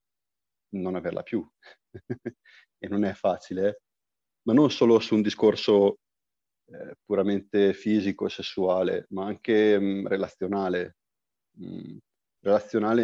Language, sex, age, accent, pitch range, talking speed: Italian, male, 30-49, native, 95-110 Hz, 110 wpm